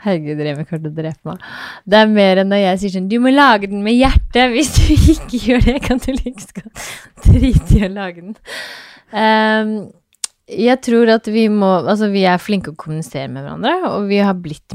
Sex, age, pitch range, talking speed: female, 20-39, 150-200 Hz, 205 wpm